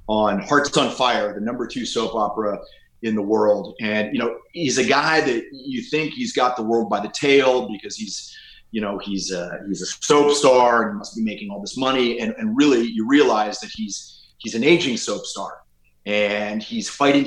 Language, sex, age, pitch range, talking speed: English, male, 30-49, 105-140 Hz, 210 wpm